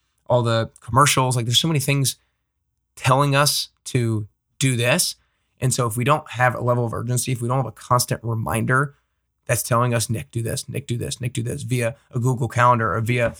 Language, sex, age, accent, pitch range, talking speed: English, male, 20-39, American, 115-135 Hz, 215 wpm